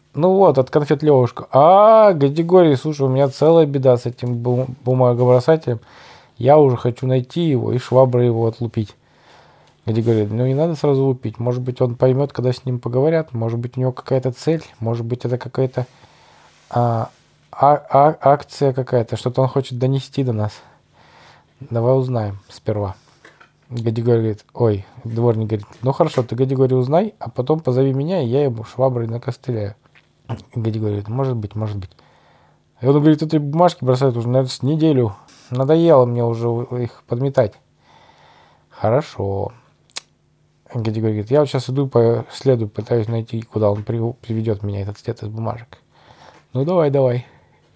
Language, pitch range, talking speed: Russian, 115-145 Hz, 155 wpm